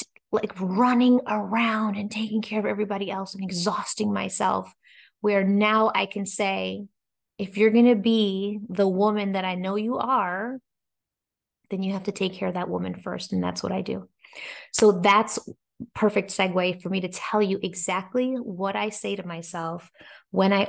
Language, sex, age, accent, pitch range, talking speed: English, female, 20-39, American, 180-215 Hz, 175 wpm